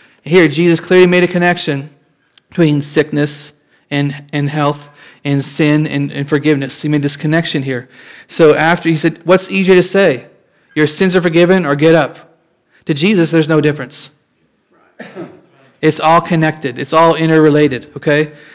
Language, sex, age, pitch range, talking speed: English, male, 30-49, 145-165 Hz, 155 wpm